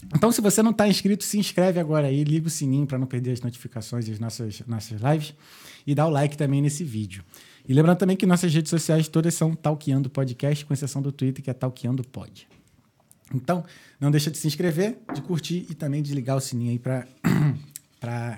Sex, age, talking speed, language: male, 20-39, 210 wpm, Portuguese